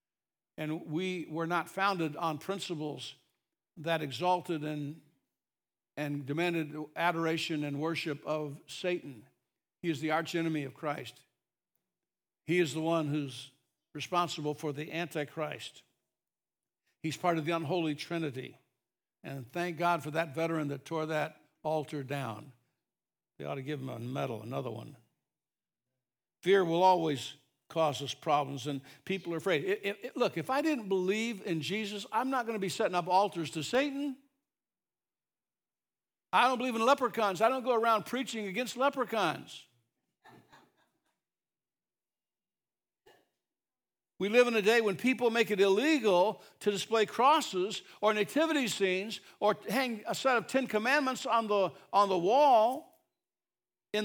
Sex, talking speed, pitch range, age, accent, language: male, 140 wpm, 150-220 Hz, 60-79, American, English